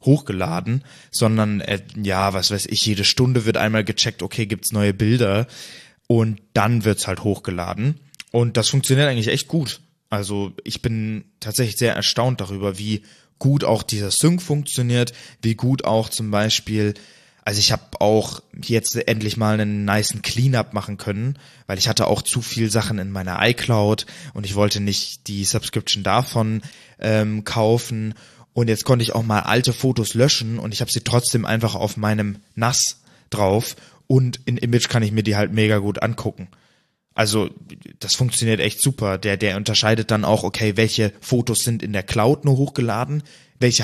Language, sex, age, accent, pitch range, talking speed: German, male, 20-39, German, 105-125 Hz, 170 wpm